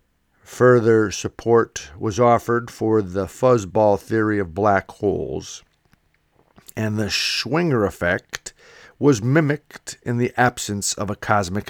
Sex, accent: male, American